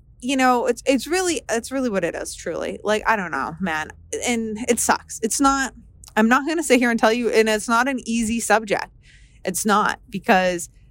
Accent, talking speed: American, 215 wpm